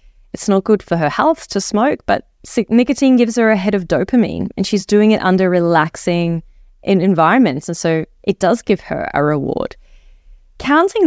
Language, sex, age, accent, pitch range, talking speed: English, female, 20-39, Australian, 165-220 Hz, 175 wpm